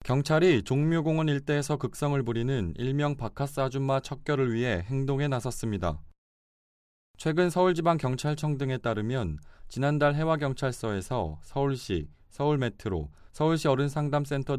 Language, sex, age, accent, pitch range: Korean, male, 20-39, native, 110-145 Hz